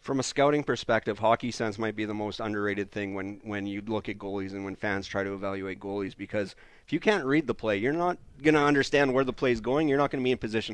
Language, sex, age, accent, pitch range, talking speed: English, male, 30-49, American, 105-130 Hz, 275 wpm